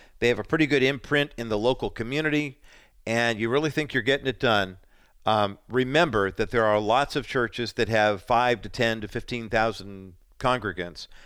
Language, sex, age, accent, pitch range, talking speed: English, male, 50-69, American, 100-125 Hz, 180 wpm